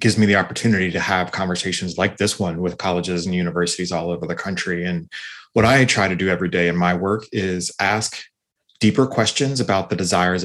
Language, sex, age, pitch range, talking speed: English, male, 30-49, 90-105 Hz, 205 wpm